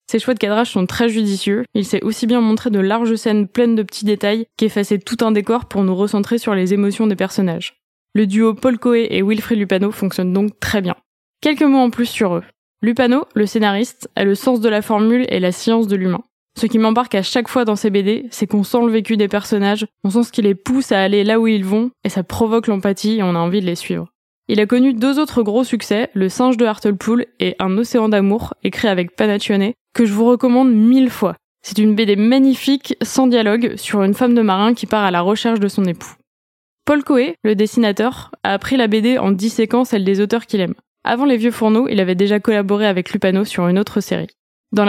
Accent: French